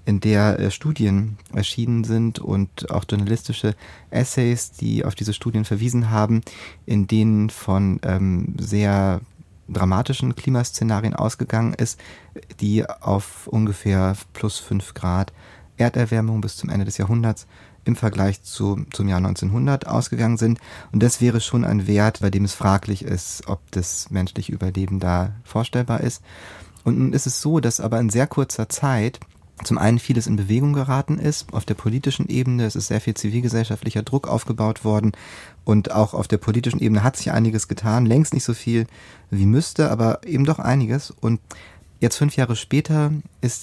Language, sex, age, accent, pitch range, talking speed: German, male, 30-49, German, 100-120 Hz, 160 wpm